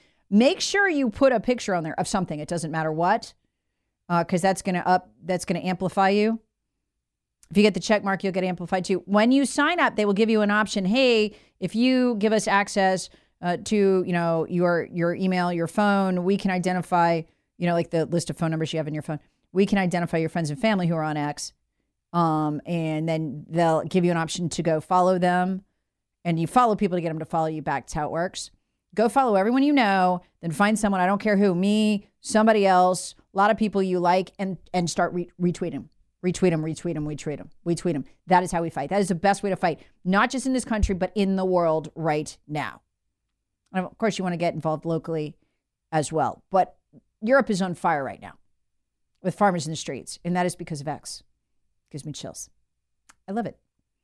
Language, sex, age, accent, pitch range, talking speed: English, female, 40-59, American, 165-200 Hz, 230 wpm